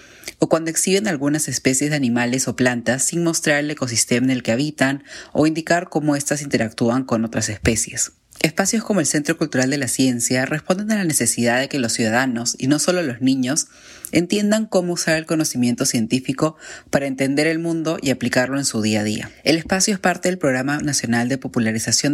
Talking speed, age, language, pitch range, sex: 195 wpm, 20-39, Spanish, 120-155 Hz, female